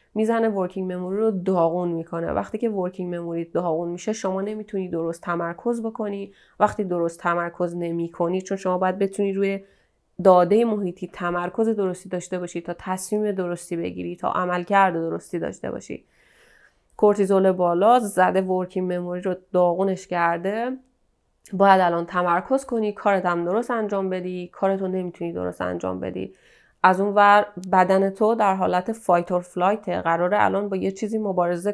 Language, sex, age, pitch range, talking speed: Persian, female, 30-49, 175-205 Hz, 145 wpm